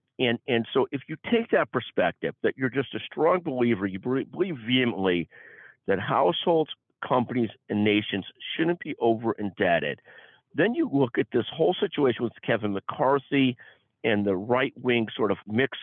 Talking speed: 155 wpm